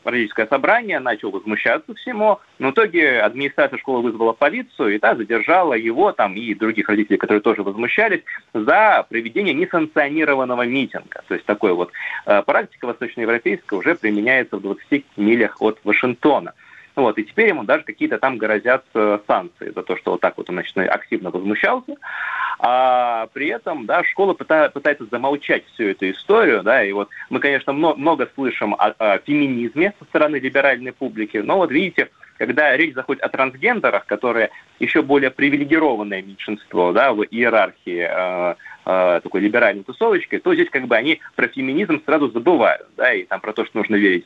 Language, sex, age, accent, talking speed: Russian, male, 30-49, native, 165 wpm